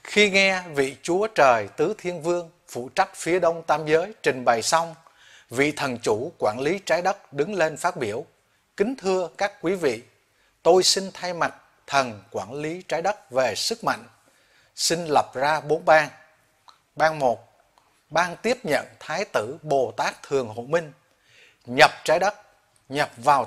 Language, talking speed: Vietnamese, 170 wpm